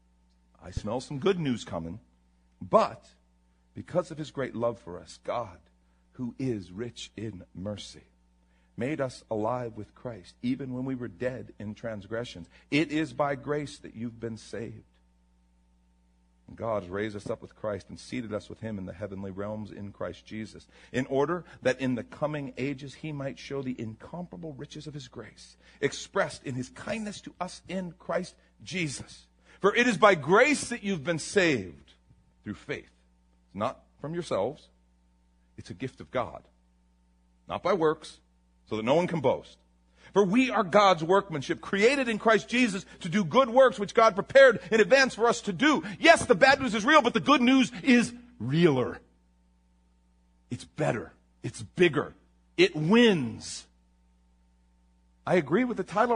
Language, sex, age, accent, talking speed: English, male, 50-69, American, 170 wpm